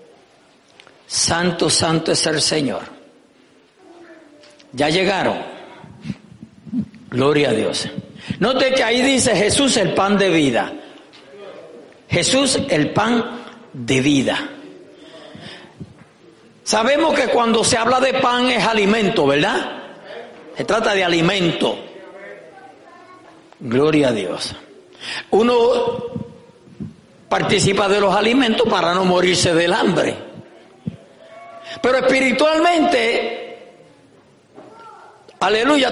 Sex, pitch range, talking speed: male, 205-295 Hz, 90 wpm